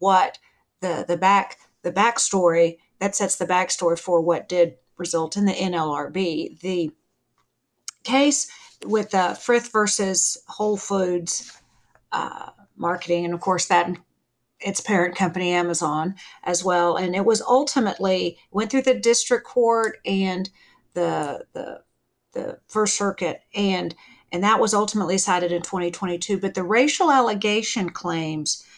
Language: English